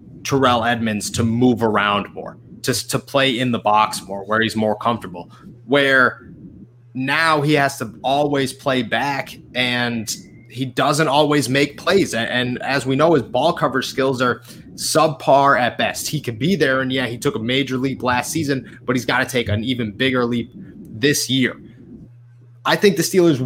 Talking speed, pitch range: 185 wpm, 115-140 Hz